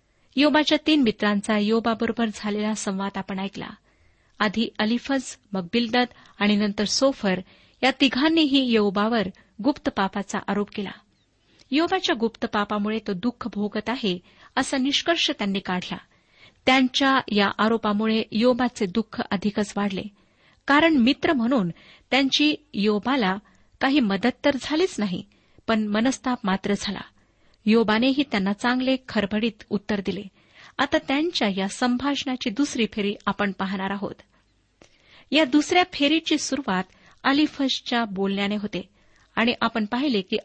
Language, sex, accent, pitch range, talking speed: Marathi, female, native, 205-265 Hz, 115 wpm